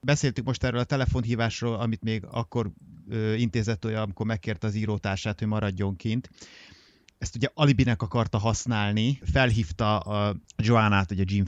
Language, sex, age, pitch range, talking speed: Hungarian, male, 30-49, 100-130 Hz, 135 wpm